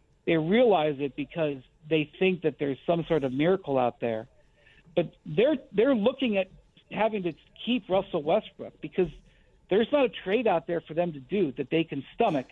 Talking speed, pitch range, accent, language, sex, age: 185 wpm, 155-205 Hz, American, English, male, 60-79